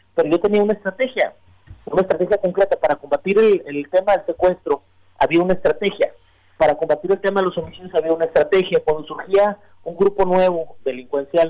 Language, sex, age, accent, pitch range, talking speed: Spanish, male, 40-59, Mexican, 155-215 Hz, 175 wpm